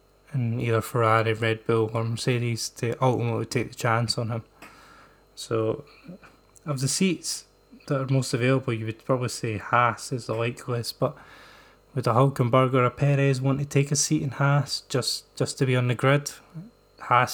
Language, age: English, 20-39